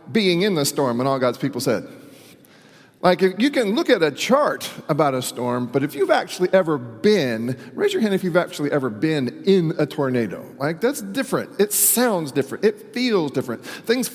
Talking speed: 200 wpm